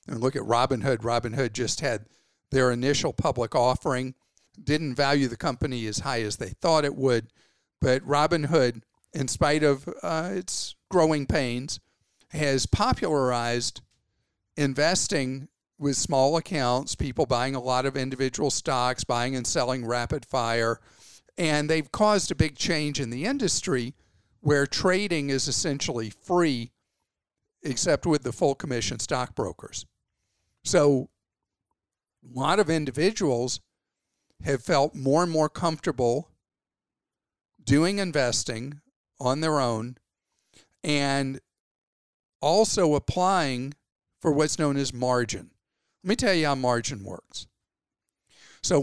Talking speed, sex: 125 wpm, male